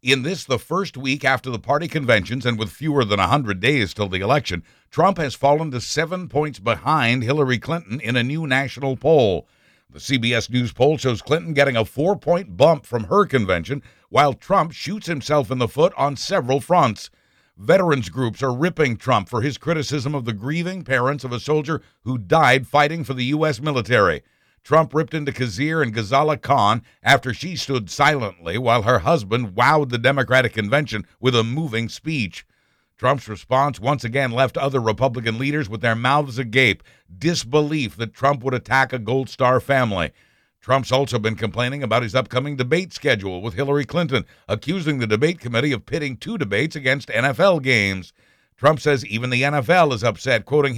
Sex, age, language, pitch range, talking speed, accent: male, 60-79, English, 120-150 Hz, 180 wpm, American